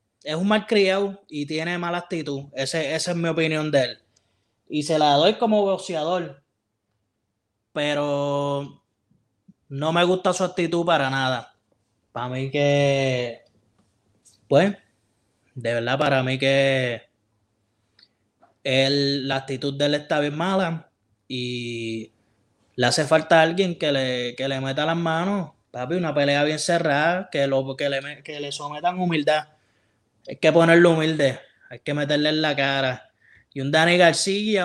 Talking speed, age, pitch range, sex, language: 145 wpm, 20-39, 125-165 Hz, male, Spanish